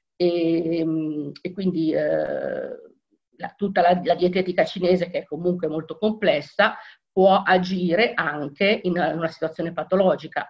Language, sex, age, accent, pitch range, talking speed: Italian, female, 50-69, native, 165-185 Hz, 120 wpm